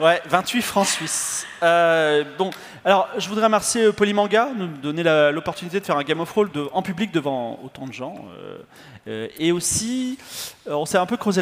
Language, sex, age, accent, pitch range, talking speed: French, male, 30-49, French, 160-230 Hz, 200 wpm